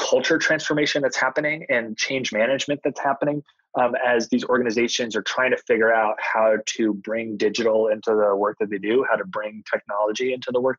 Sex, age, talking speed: male, 20-39, 195 wpm